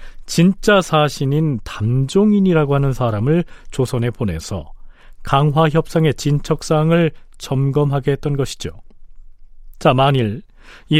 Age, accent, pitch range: 40-59, native, 110-165 Hz